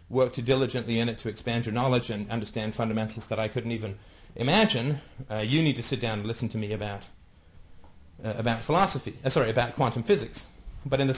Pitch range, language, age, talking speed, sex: 110-135 Hz, English, 30-49, 210 wpm, male